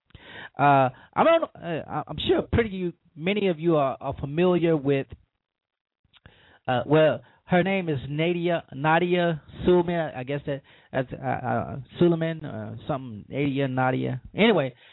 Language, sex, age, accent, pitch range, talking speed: English, male, 20-39, American, 135-175 Hz, 135 wpm